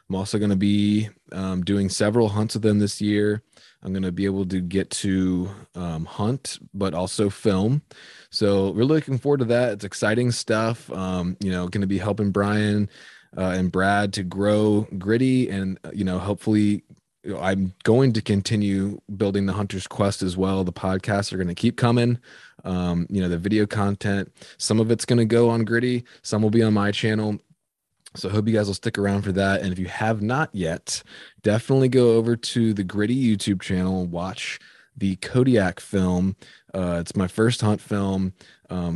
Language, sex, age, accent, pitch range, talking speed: English, male, 20-39, American, 95-105 Hz, 195 wpm